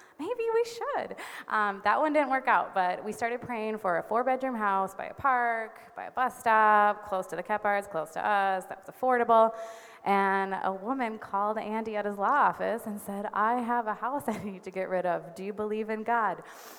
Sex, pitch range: female, 175-235 Hz